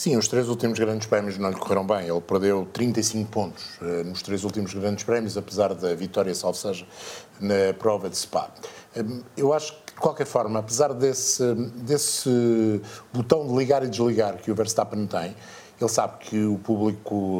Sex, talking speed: male, 175 wpm